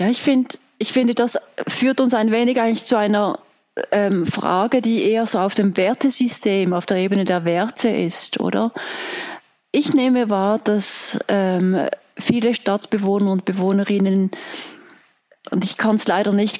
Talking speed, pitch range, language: 155 wpm, 195-235 Hz, German